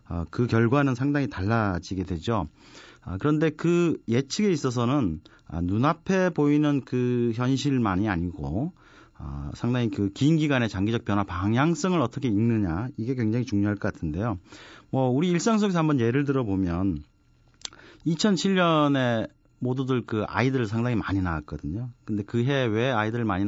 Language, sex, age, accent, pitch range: Korean, male, 40-59, native, 100-150 Hz